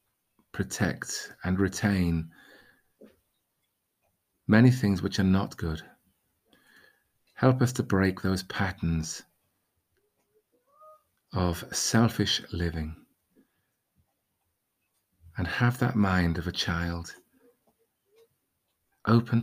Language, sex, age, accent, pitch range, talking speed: English, male, 40-59, British, 85-110 Hz, 80 wpm